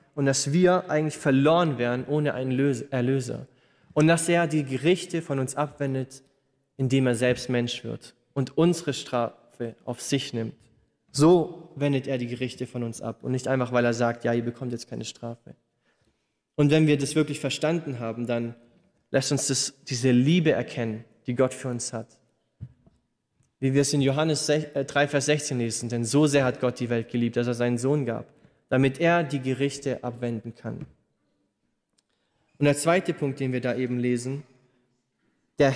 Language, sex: German, male